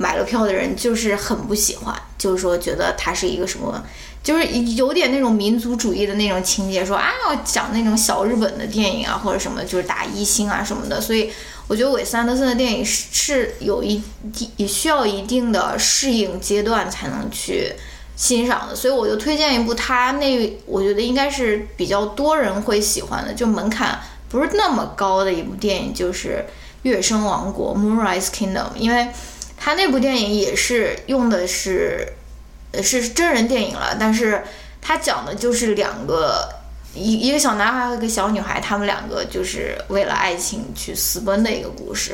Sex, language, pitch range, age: female, Chinese, 200-245 Hz, 10-29